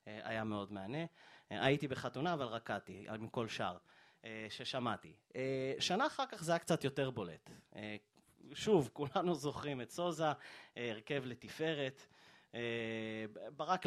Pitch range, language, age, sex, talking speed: 115-165 Hz, Hebrew, 30-49, male, 115 wpm